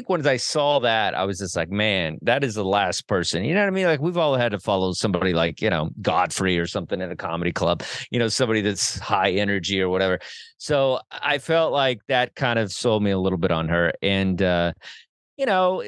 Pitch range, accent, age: 100-140 Hz, American, 30-49